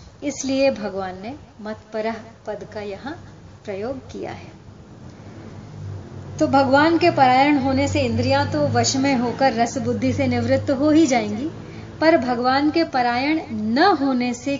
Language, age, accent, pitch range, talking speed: Hindi, 30-49, native, 275-385 Hz, 150 wpm